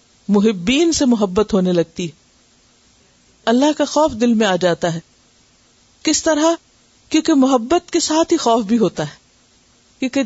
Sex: female